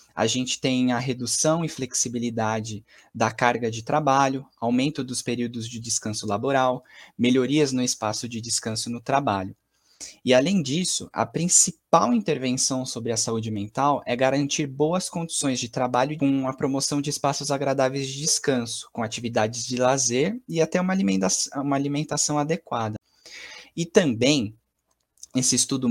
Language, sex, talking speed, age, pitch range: Portuguese, male, 145 wpm, 20-39, 115-150 Hz